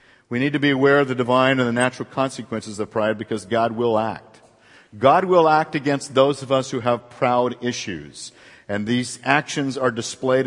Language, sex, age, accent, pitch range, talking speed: English, male, 50-69, American, 125-150 Hz, 195 wpm